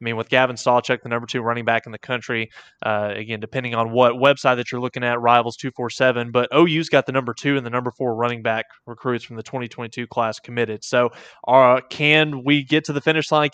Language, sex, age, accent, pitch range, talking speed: English, male, 20-39, American, 120-140 Hz, 230 wpm